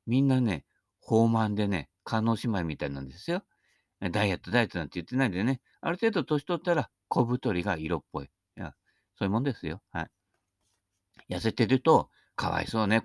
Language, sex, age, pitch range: Japanese, male, 50-69, 85-120 Hz